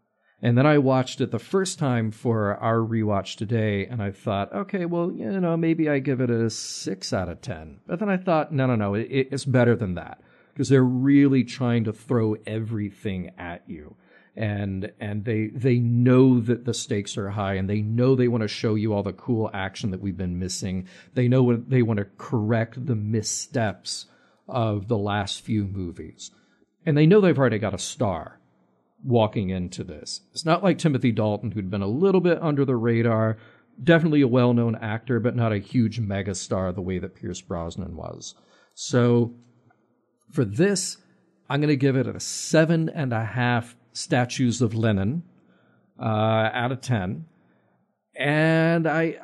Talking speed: 180 wpm